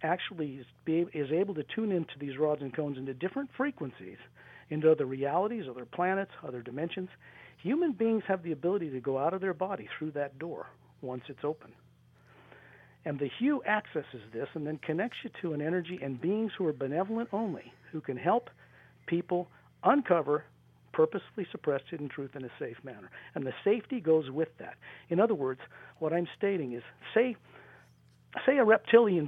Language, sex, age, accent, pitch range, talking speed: English, male, 50-69, American, 135-195 Hz, 175 wpm